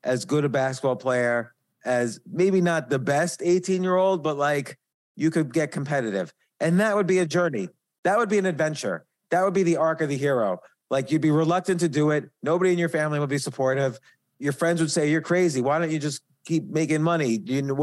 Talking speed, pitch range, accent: 220 wpm, 140-170 Hz, American